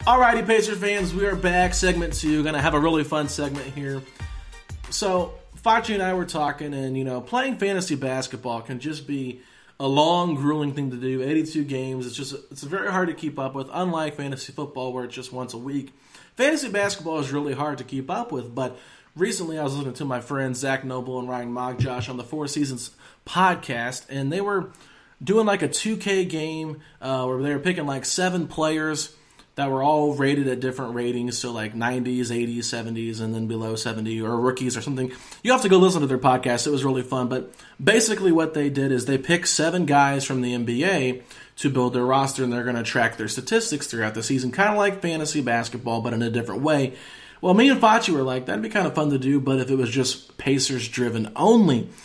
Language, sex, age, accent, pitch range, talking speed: English, male, 30-49, American, 130-170 Hz, 220 wpm